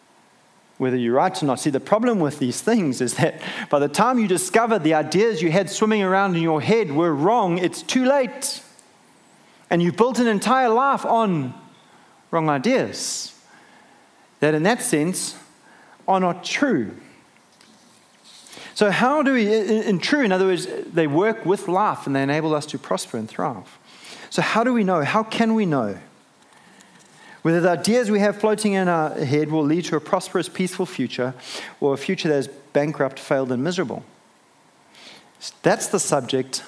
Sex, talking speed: male, 175 wpm